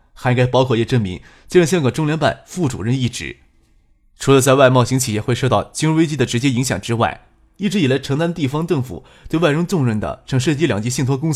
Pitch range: 115-155 Hz